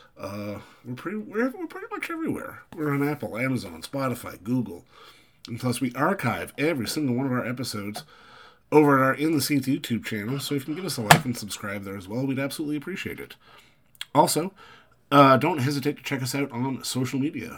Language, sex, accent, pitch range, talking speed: English, male, American, 105-135 Hz, 205 wpm